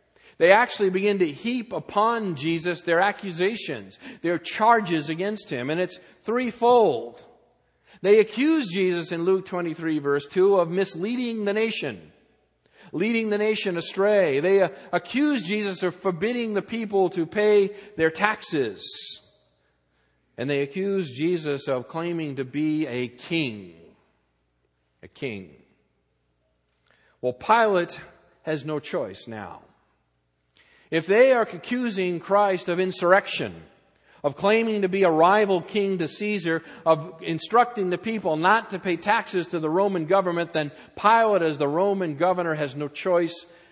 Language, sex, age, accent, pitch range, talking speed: English, male, 50-69, American, 125-200 Hz, 135 wpm